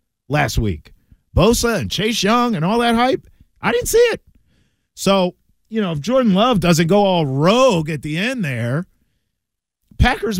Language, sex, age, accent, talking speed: English, male, 50-69, American, 165 wpm